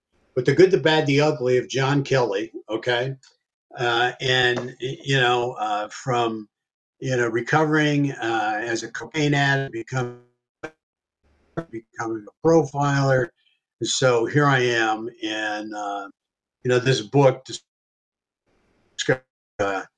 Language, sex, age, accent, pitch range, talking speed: English, male, 60-79, American, 115-140 Hz, 120 wpm